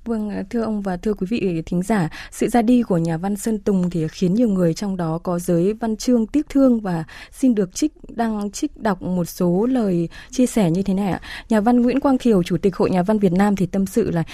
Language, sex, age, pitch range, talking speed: Vietnamese, female, 20-39, 175-235 Hz, 255 wpm